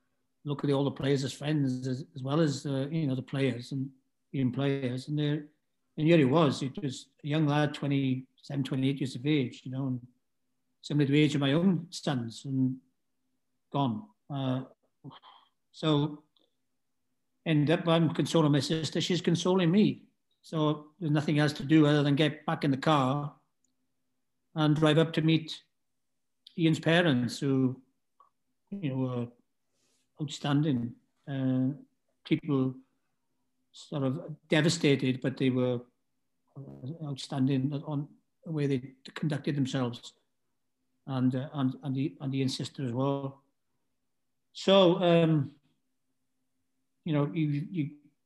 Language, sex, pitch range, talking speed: English, male, 135-160 Hz, 145 wpm